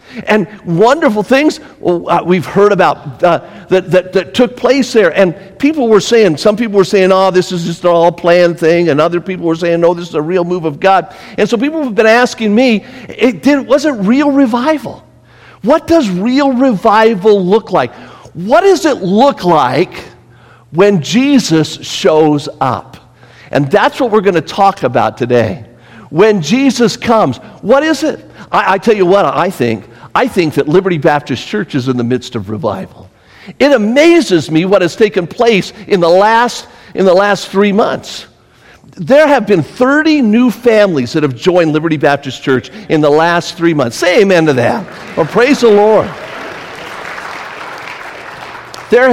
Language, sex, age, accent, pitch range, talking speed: English, male, 50-69, American, 160-235 Hz, 175 wpm